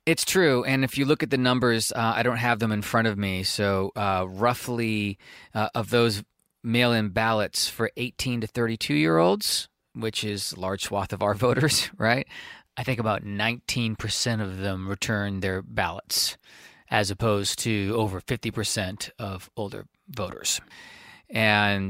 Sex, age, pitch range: male, 30-49, 95-115 Hz